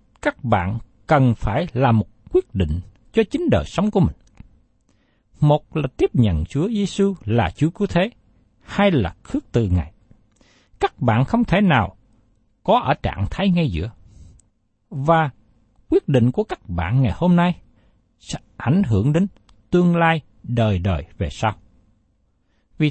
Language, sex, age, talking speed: Vietnamese, male, 60-79, 155 wpm